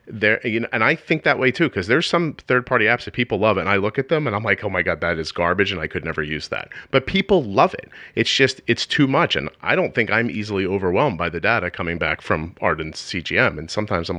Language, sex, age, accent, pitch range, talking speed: English, male, 40-59, American, 90-130 Hz, 270 wpm